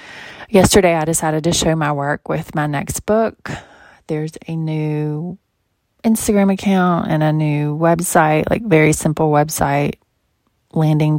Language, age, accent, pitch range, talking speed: English, 30-49, American, 155-180 Hz, 135 wpm